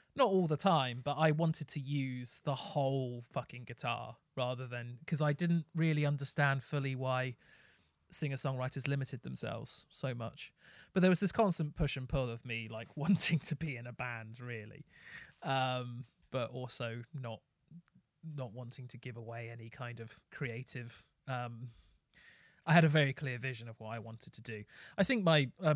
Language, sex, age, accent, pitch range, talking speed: English, male, 30-49, British, 125-155 Hz, 175 wpm